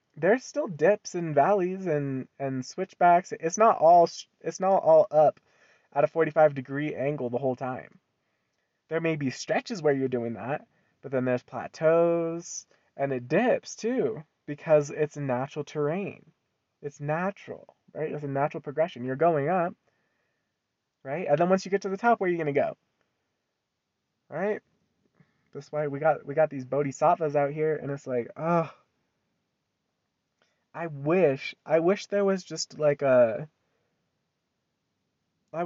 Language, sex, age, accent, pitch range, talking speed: English, male, 20-39, American, 135-180 Hz, 160 wpm